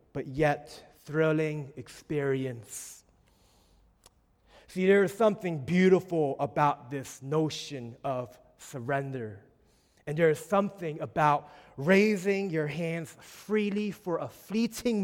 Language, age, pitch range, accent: English, 30-49, 125-160 Hz, American